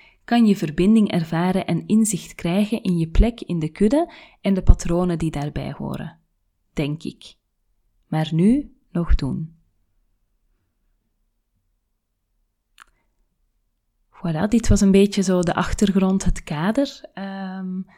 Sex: female